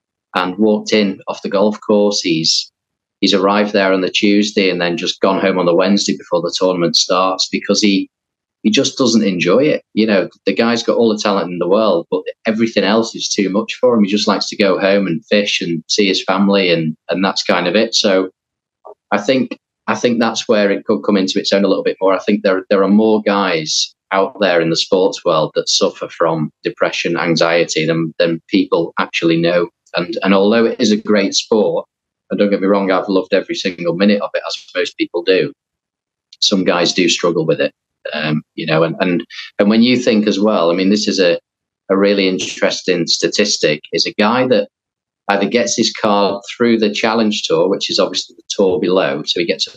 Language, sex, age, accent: English, male, 30-49, British